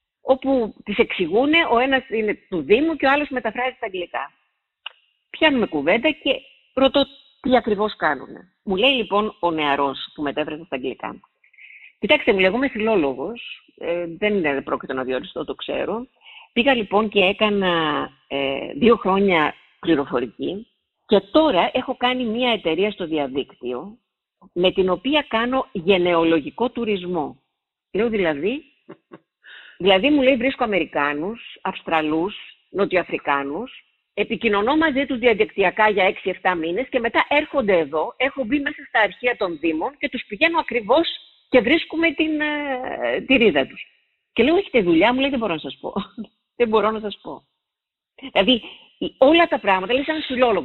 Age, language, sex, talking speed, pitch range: 50-69, Greek, female, 145 wpm, 175-265 Hz